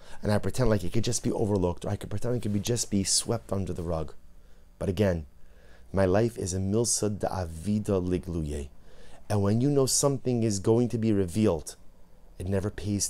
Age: 30-49